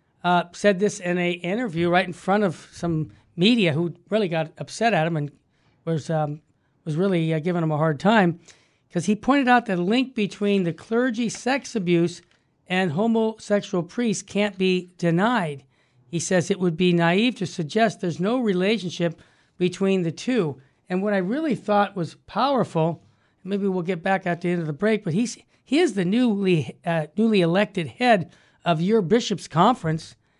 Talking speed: 180 wpm